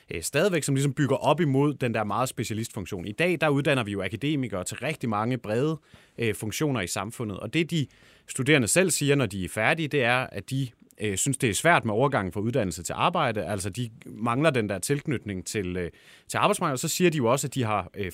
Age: 30-49